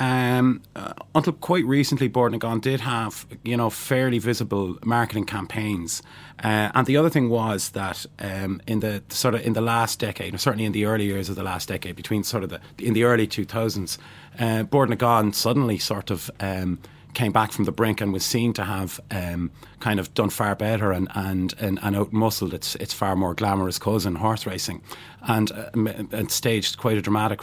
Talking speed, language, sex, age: 200 wpm, English, male, 30-49